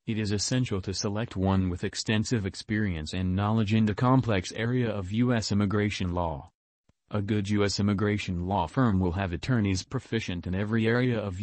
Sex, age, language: male, 30-49, English